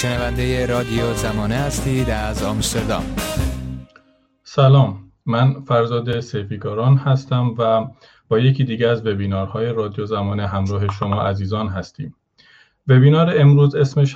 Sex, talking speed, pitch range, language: male, 115 wpm, 105-130 Hz, English